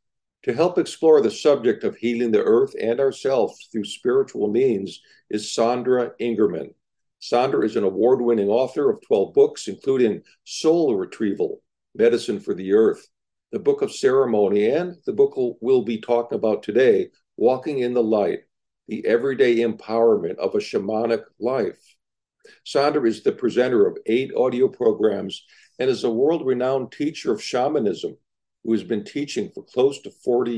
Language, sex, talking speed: English, male, 155 wpm